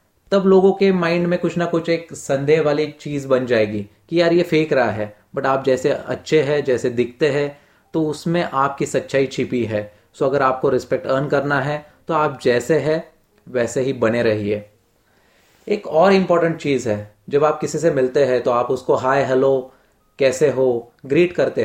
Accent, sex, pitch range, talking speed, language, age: native, male, 120-160 Hz, 190 wpm, Hindi, 30-49